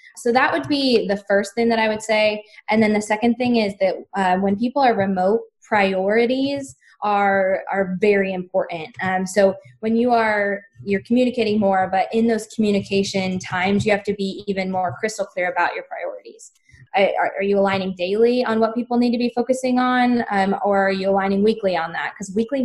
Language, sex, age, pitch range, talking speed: English, female, 10-29, 195-230 Hz, 200 wpm